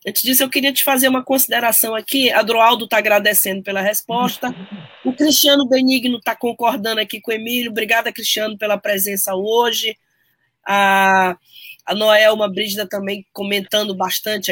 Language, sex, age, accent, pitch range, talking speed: Portuguese, female, 20-39, Brazilian, 195-240 Hz, 150 wpm